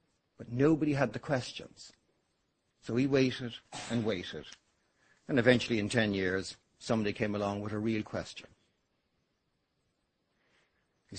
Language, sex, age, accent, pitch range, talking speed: English, male, 60-79, Irish, 115-150 Hz, 125 wpm